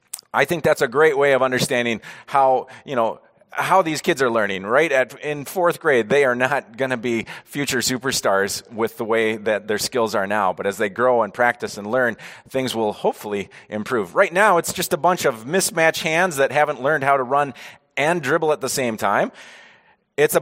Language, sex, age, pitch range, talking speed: English, male, 30-49, 130-180 Hz, 210 wpm